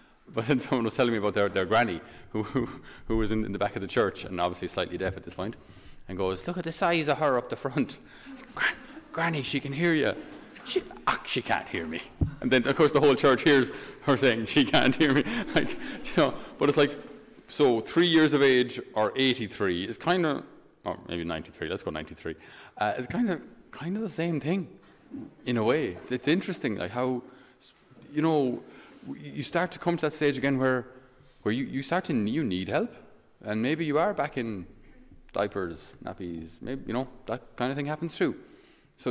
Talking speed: 215 wpm